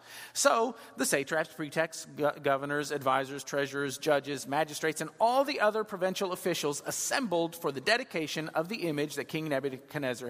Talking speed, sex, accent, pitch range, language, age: 145 wpm, male, American, 150-230 Hz, English, 40-59